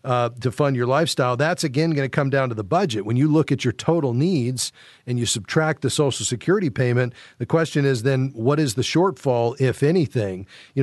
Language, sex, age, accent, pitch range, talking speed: English, male, 40-59, American, 120-140 Hz, 215 wpm